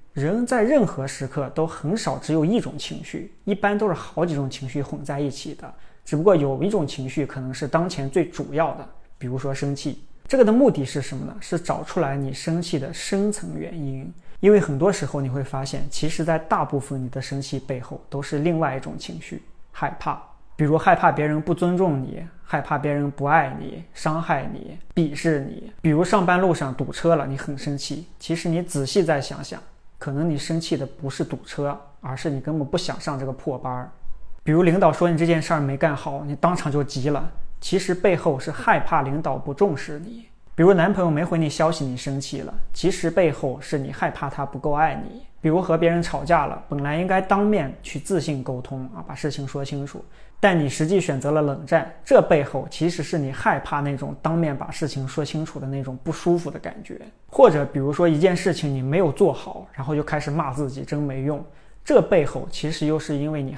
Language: Chinese